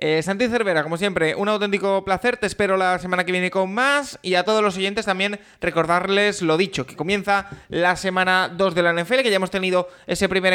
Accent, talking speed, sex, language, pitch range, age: Spanish, 220 wpm, male, Spanish, 160-200 Hz, 20-39